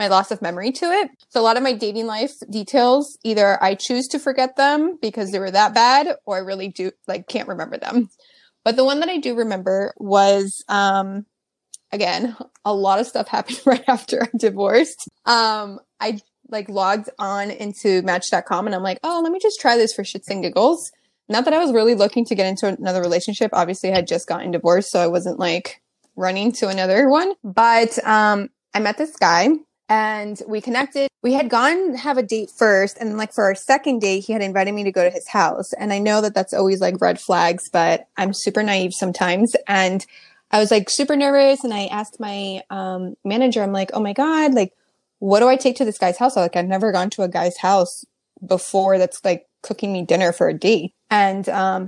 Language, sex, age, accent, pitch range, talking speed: English, female, 20-39, American, 195-260 Hz, 215 wpm